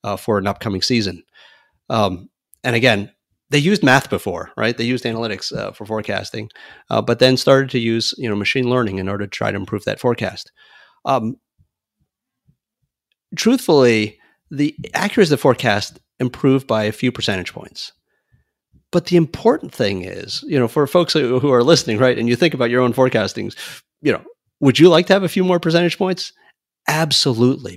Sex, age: male, 40-59